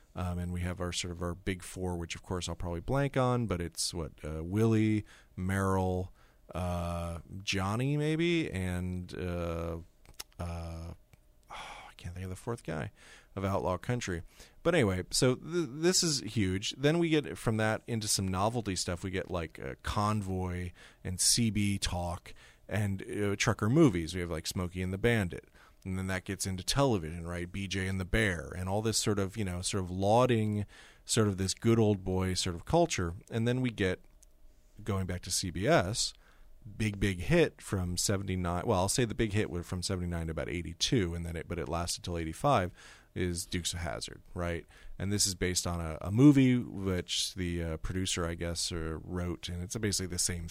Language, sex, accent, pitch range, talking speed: English, male, American, 85-105 Hz, 195 wpm